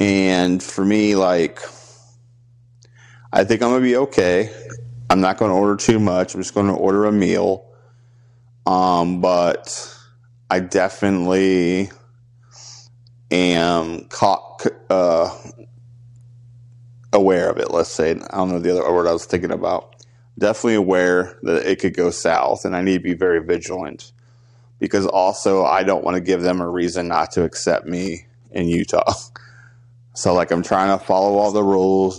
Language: English